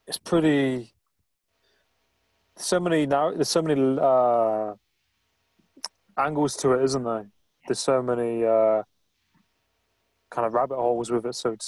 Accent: British